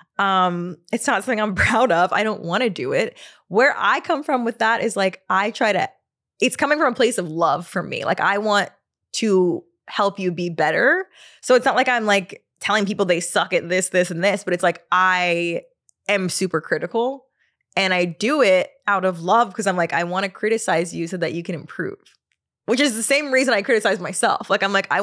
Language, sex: English, female